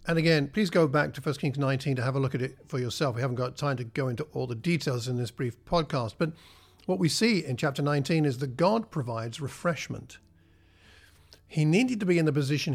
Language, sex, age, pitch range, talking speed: English, male, 50-69, 125-160 Hz, 235 wpm